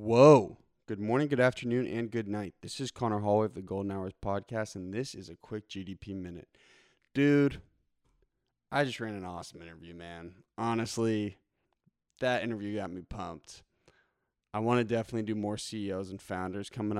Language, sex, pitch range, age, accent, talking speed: English, male, 100-115 Hz, 20-39, American, 170 wpm